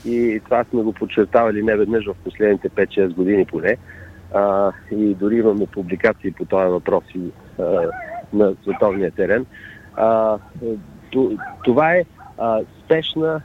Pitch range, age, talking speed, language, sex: 100-125 Hz, 50-69, 110 wpm, Bulgarian, male